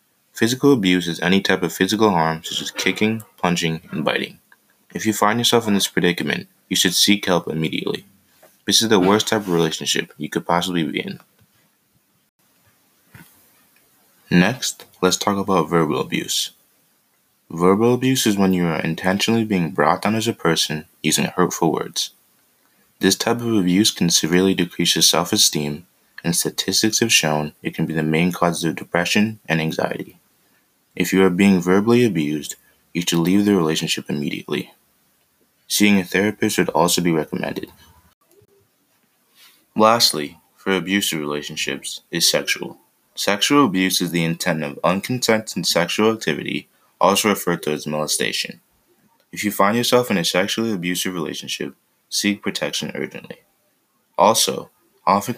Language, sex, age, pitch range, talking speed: English, male, 20-39, 85-105 Hz, 145 wpm